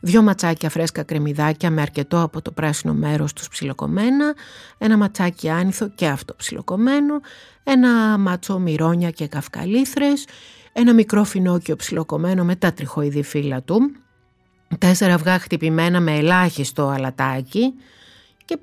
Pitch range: 160-245 Hz